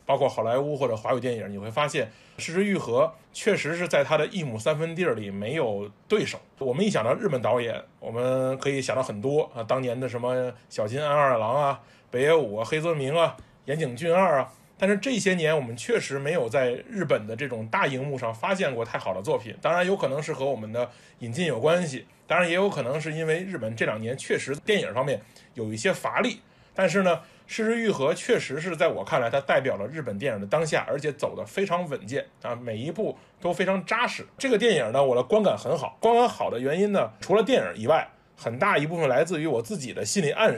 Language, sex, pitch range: Chinese, male, 125-190 Hz